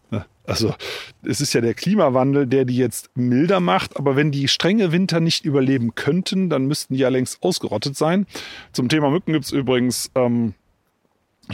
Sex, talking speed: male, 175 wpm